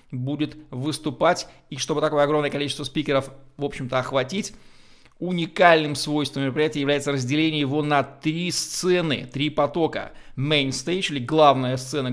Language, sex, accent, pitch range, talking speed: Russian, male, native, 130-155 Hz, 135 wpm